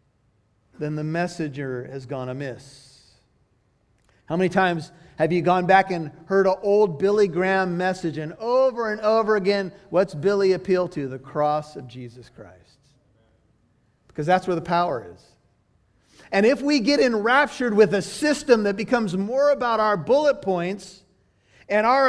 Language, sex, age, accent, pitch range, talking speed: English, male, 40-59, American, 145-215 Hz, 155 wpm